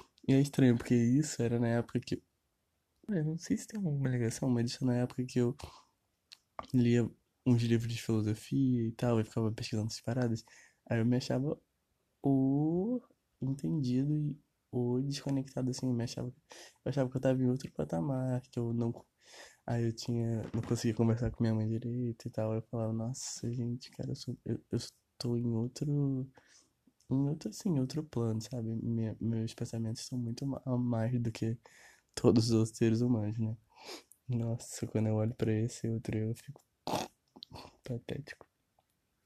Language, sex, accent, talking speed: Portuguese, male, Brazilian, 170 wpm